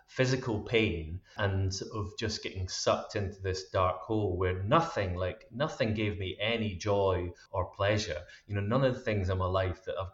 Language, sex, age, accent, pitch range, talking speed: English, male, 30-49, British, 95-115 Hz, 190 wpm